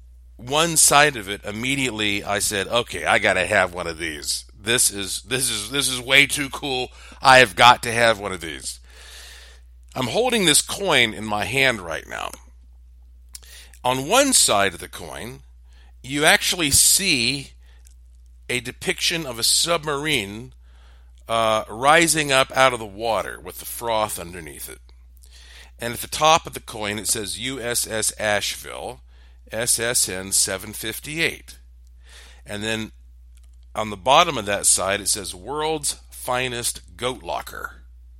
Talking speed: 145 wpm